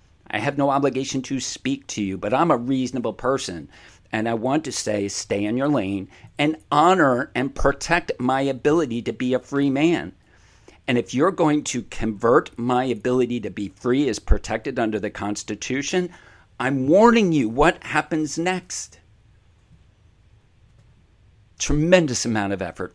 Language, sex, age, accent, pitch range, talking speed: English, male, 50-69, American, 100-125 Hz, 155 wpm